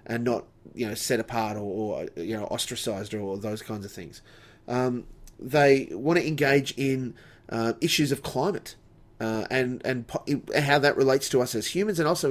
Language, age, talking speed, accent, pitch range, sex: English, 30-49, 195 wpm, Australian, 115-140 Hz, male